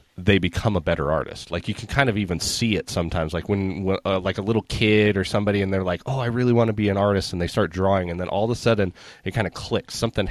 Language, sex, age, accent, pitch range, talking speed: English, male, 30-49, American, 90-110 Hz, 290 wpm